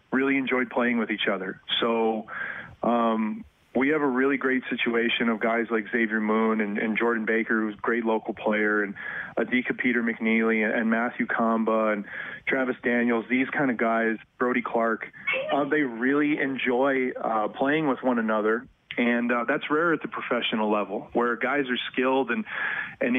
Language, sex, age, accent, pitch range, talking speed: English, male, 30-49, American, 110-130 Hz, 175 wpm